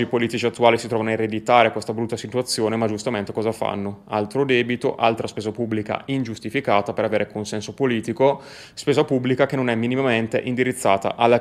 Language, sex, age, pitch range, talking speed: Italian, male, 20-39, 105-120 Hz, 170 wpm